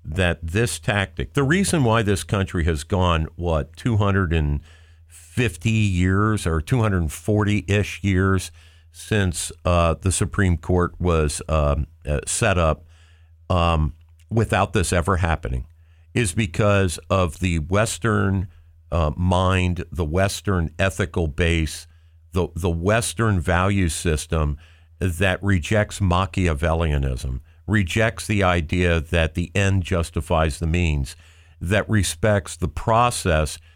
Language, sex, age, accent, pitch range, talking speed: English, male, 50-69, American, 80-100 Hz, 110 wpm